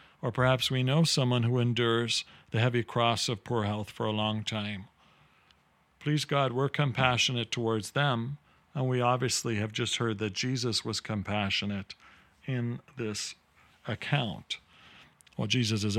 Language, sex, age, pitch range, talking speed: English, male, 50-69, 110-130 Hz, 145 wpm